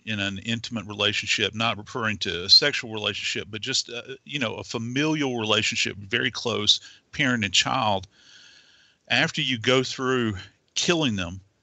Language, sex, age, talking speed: English, male, 50-69, 150 wpm